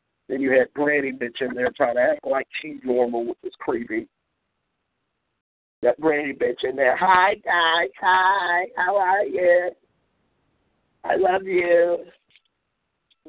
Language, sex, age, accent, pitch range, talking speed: English, male, 50-69, American, 150-215 Hz, 135 wpm